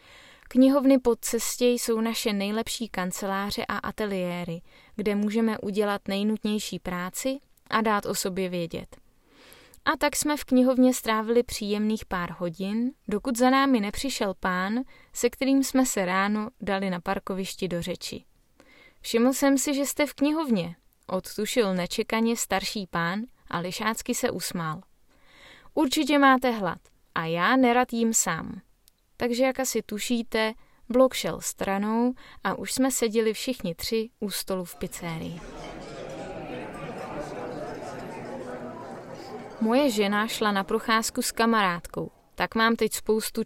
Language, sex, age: Czech, female, 20-39